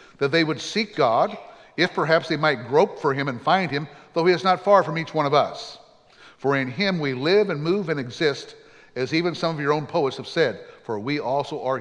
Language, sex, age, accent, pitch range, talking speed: English, male, 60-79, American, 145-185 Hz, 240 wpm